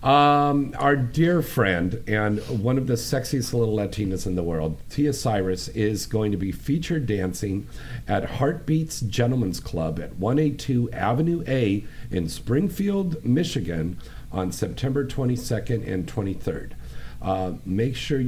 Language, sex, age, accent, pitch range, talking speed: English, male, 50-69, American, 95-125 Hz, 135 wpm